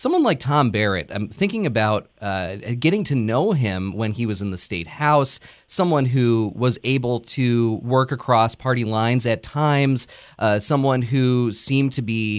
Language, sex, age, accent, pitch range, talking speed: English, male, 30-49, American, 110-145 Hz, 175 wpm